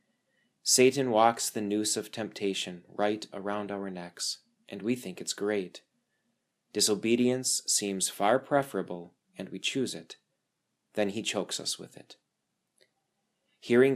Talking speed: 130 wpm